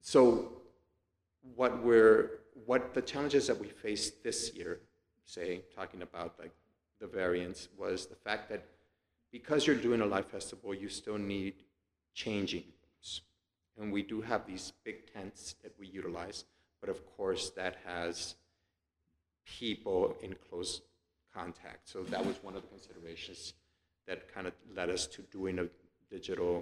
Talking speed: 150 wpm